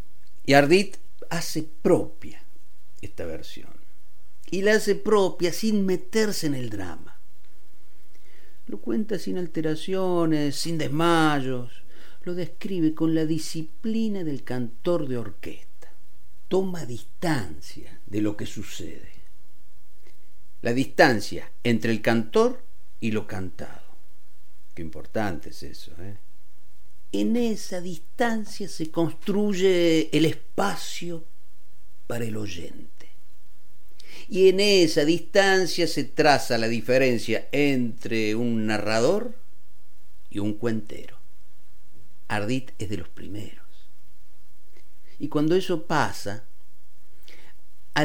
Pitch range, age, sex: 110-175 Hz, 50-69, male